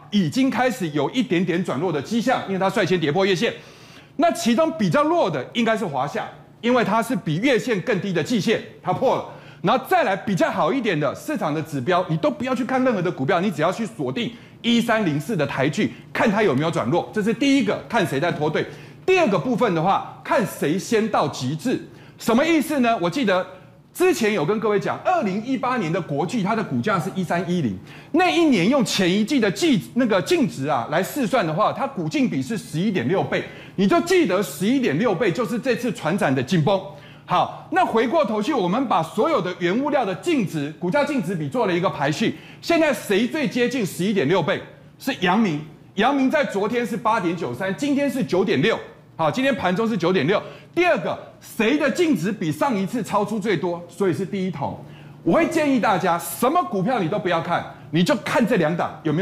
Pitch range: 180-270 Hz